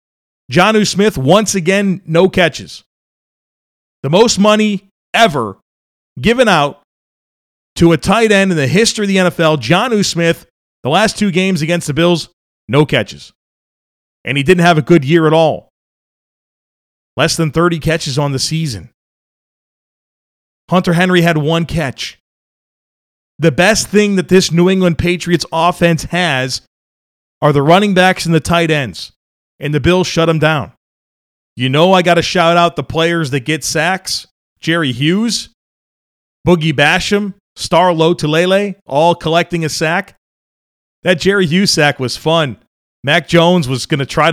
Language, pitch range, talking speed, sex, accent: English, 145-180 Hz, 155 wpm, male, American